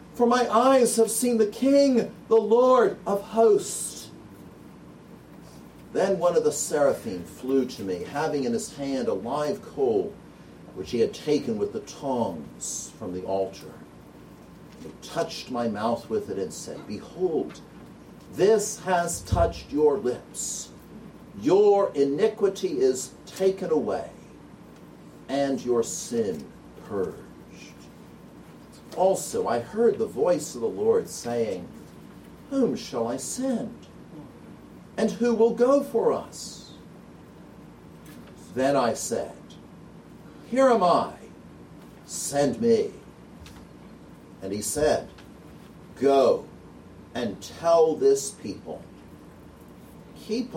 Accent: American